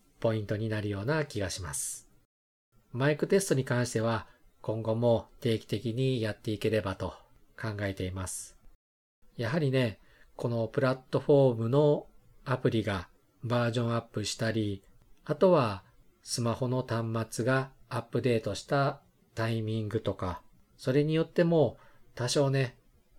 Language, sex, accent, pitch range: Japanese, male, native, 110-135 Hz